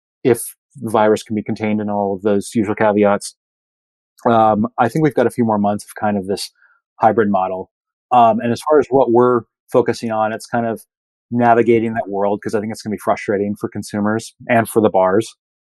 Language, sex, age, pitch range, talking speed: English, male, 30-49, 105-120 Hz, 215 wpm